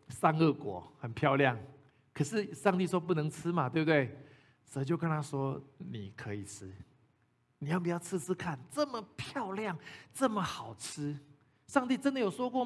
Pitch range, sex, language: 135-195 Hz, male, Chinese